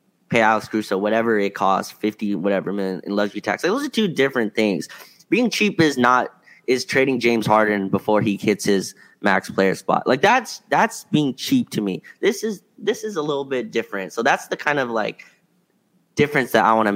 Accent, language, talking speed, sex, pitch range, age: American, English, 200 wpm, male, 105-135 Hz, 20-39